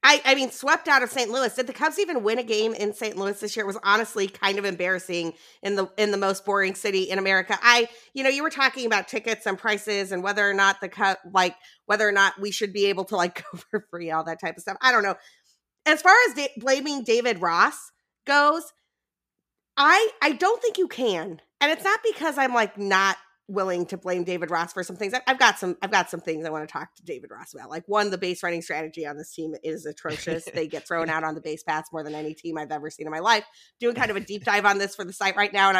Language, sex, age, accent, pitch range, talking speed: English, female, 30-49, American, 180-240 Hz, 265 wpm